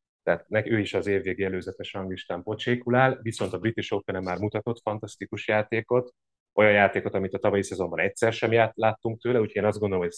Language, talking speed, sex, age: Hungarian, 200 wpm, male, 30-49